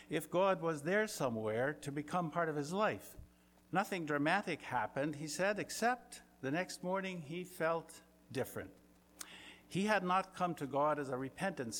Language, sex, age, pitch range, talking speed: English, male, 60-79, 145-185 Hz, 165 wpm